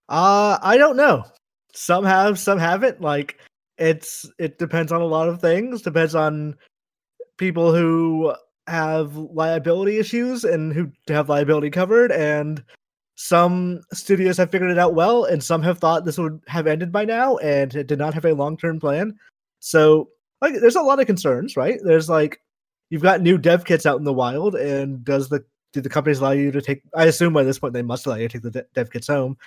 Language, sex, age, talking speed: English, male, 20-39, 200 wpm